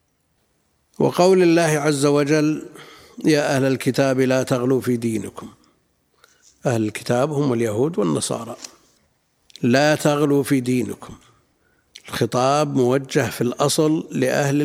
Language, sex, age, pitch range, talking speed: Arabic, male, 50-69, 115-140 Hz, 100 wpm